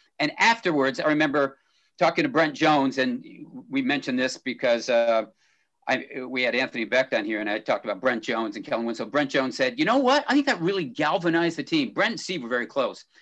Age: 50-69